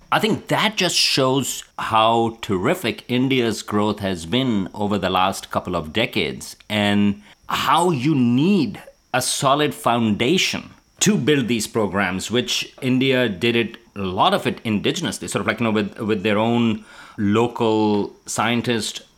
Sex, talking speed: male, 150 wpm